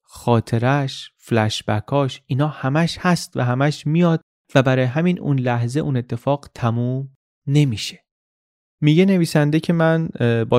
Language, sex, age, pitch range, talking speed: Persian, male, 30-49, 115-140 Hz, 130 wpm